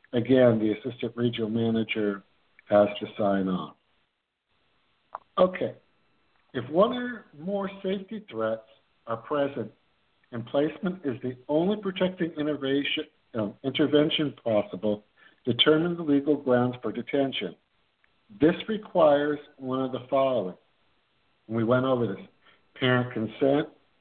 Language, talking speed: English, 110 wpm